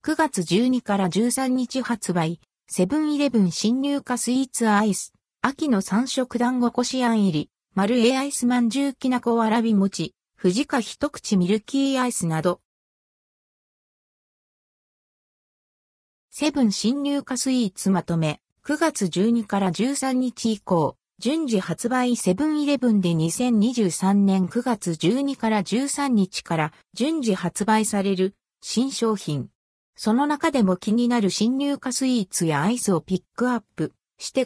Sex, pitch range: female, 190-260 Hz